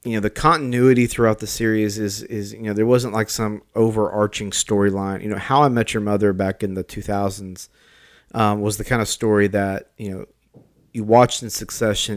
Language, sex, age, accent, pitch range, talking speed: English, male, 30-49, American, 95-110 Hz, 200 wpm